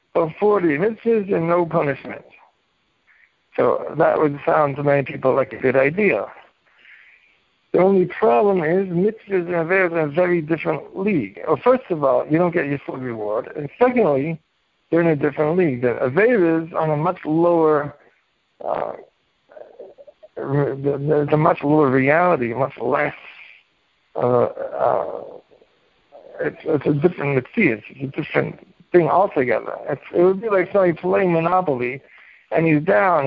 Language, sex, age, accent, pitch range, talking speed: English, male, 60-79, American, 145-185 Hz, 150 wpm